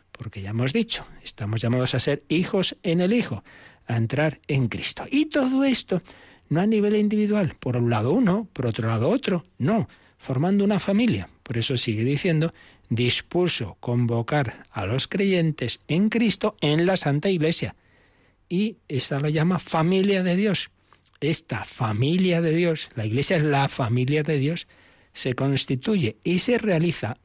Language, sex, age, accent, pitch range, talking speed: Spanish, male, 60-79, Spanish, 115-180 Hz, 160 wpm